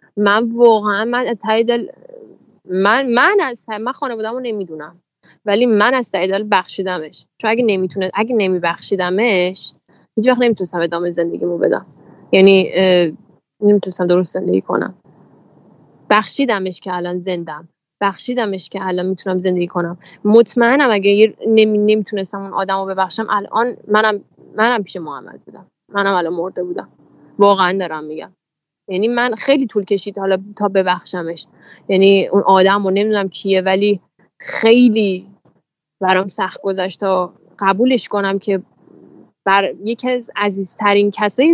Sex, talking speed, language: female, 130 wpm, Persian